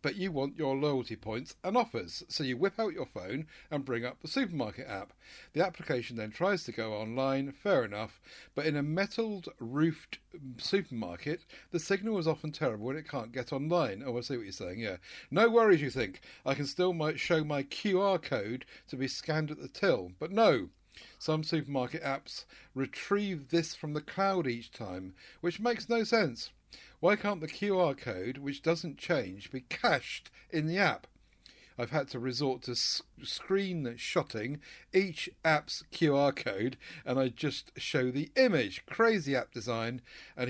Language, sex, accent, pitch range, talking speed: English, male, British, 125-175 Hz, 175 wpm